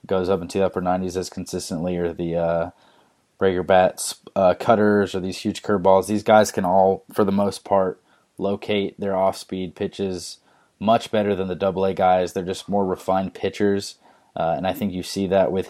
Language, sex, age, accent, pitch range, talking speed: English, male, 20-39, American, 90-100 Hz, 190 wpm